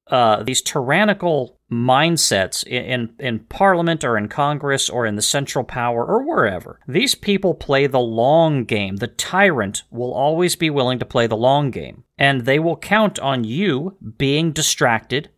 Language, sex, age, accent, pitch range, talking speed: English, male, 40-59, American, 115-155 Hz, 170 wpm